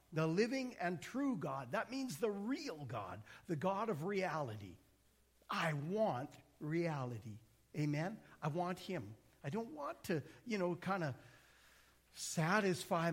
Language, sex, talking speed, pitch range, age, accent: English, male, 135 wpm, 145-205 Hz, 50-69, American